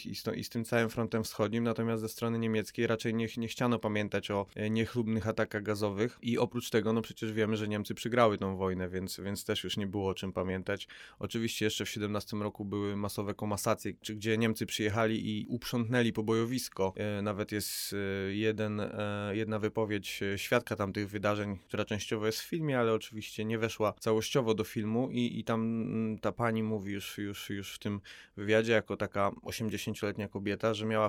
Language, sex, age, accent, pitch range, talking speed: Polish, male, 20-39, native, 100-115 Hz, 185 wpm